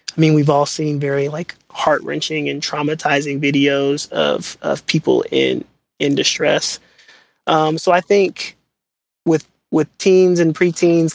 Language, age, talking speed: English, 20-39, 140 wpm